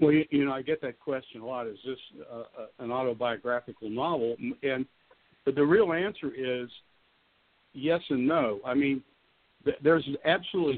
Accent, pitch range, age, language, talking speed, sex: American, 120-145 Hz, 60-79, English, 150 wpm, male